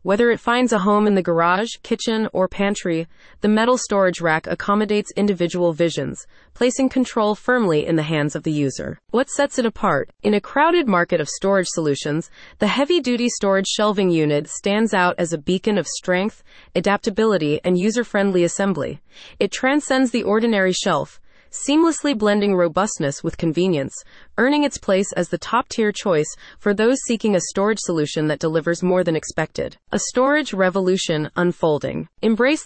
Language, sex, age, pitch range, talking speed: English, female, 30-49, 175-230 Hz, 160 wpm